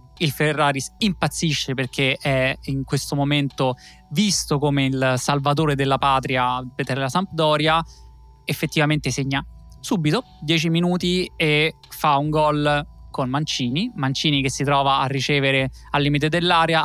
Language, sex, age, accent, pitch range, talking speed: Italian, male, 20-39, native, 140-170 Hz, 130 wpm